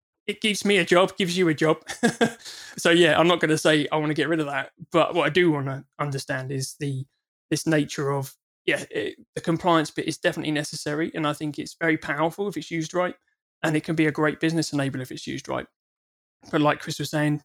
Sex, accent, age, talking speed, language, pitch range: male, British, 20-39, 240 wpm, English, 140-165 Hz